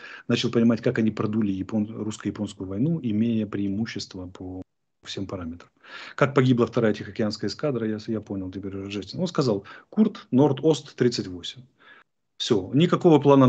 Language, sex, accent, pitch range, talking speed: Russian, male, native, 100-135 Hz, 135 wpm